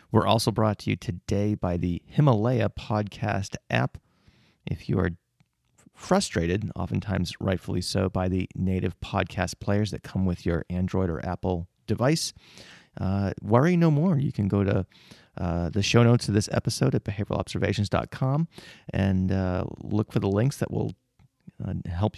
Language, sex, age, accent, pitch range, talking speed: English, male, 30-49, American, 95-115 Hz, 155 wpm